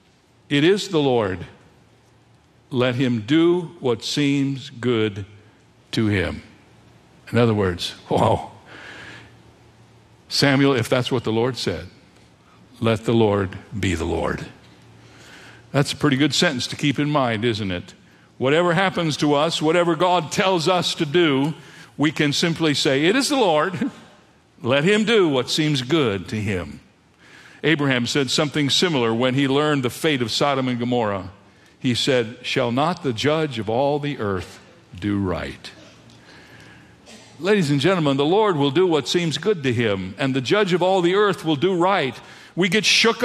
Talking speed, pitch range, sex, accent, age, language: 160 wpm, 120-175 Hz, male, American, 60-79, English